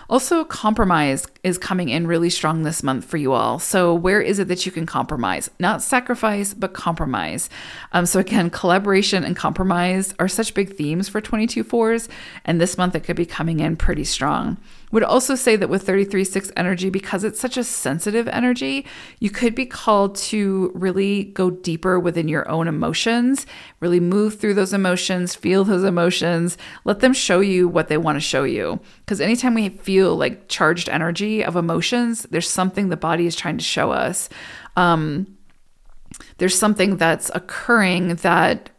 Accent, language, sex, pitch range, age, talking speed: American, English, female, 175-210 Hz, 40-59, 175 wpm